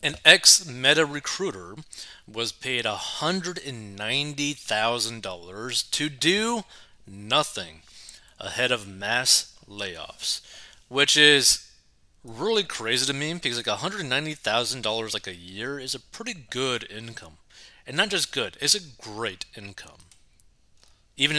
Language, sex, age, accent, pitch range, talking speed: English, male, 30-49, American, 110-150 Hz, 110 wpm